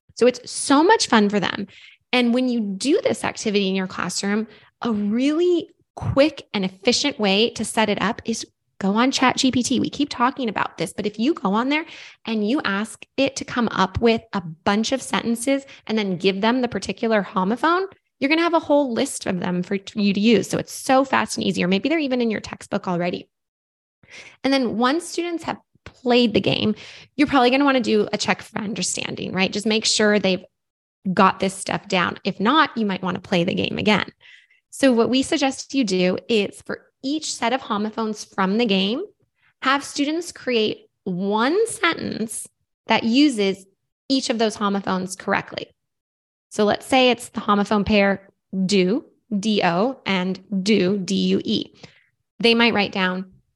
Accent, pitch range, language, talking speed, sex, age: American, 195-265 Hz, English, 190 wpm, female, 20-39